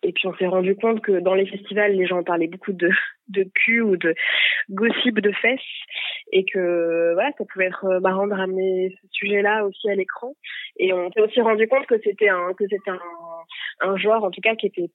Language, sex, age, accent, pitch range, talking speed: French, female, 20-39, French, 180-215 Hz, 225 wpm